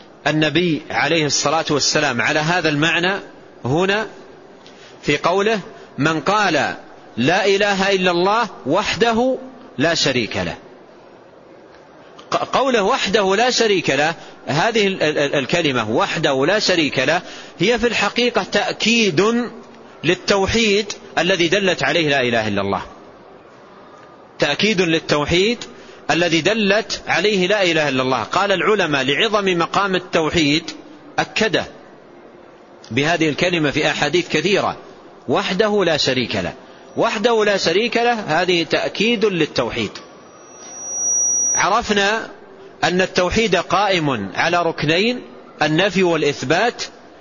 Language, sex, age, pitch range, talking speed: Arabic, male, 40-59, 155-205 Hz, 105 wpm